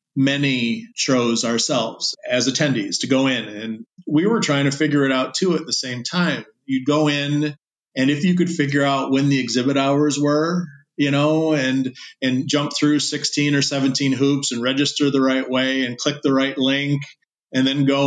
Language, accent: English, American